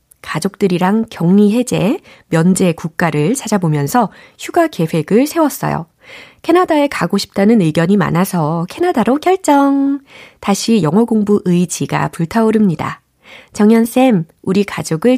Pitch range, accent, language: 165-240 Hz, native, Korean